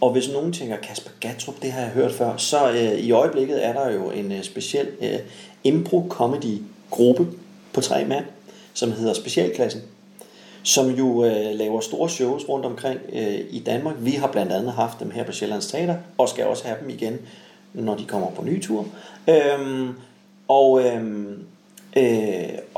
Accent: native